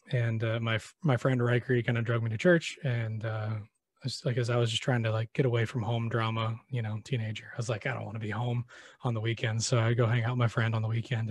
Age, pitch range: 20-39, 115-135 Hz